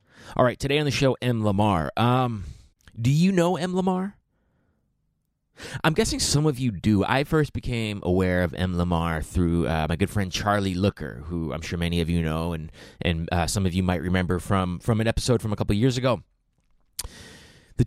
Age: 30-49